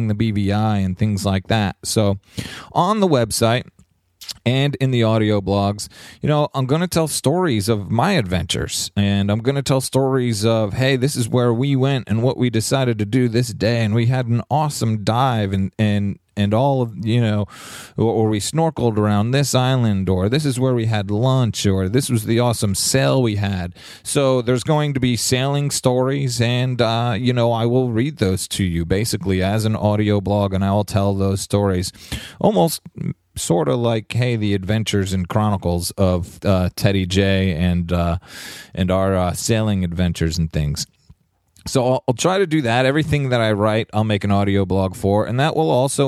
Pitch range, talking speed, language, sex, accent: 100-130 Hz, 195 wpm, English, male, American